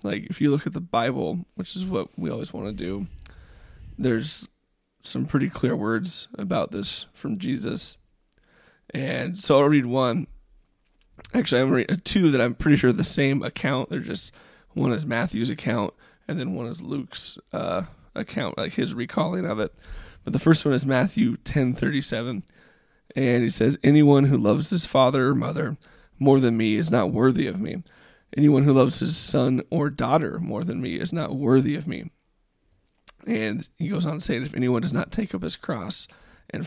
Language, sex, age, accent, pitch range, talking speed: English, male, 20-39, American, 125-155 Hz, 190 wpm